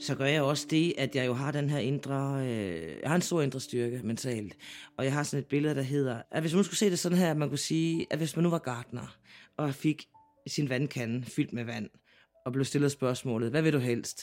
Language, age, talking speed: Danish, 30-49, 255 wpm